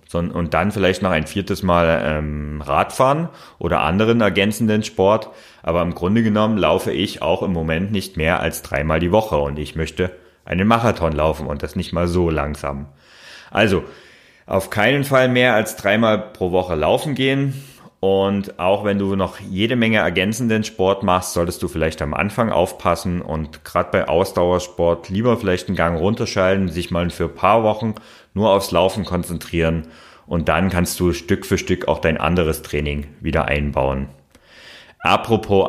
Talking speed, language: 170 wpm, German